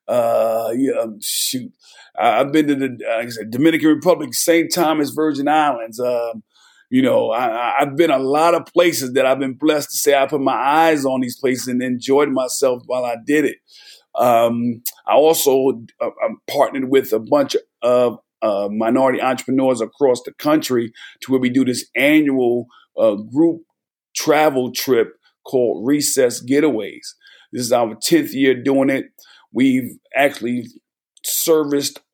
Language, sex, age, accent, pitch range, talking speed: English, male, 50-69, American, 125-155 Hz, 160 wpm